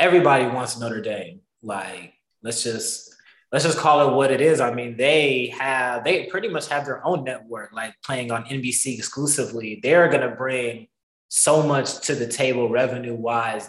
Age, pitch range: 20-39, 115-135 Hz